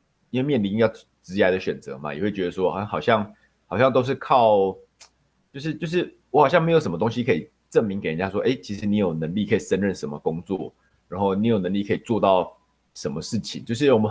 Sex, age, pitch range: male, 30-49, 95-130 Hz